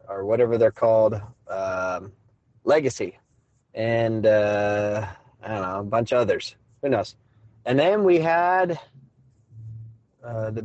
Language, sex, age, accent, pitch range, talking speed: English, male, 30-49, American, 115-165 Hz, 130 wpm